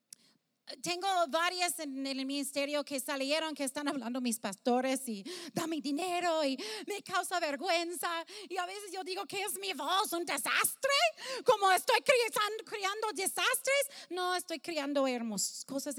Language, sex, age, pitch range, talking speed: English, female, 30-49, 240-330 Hz, 150 wpm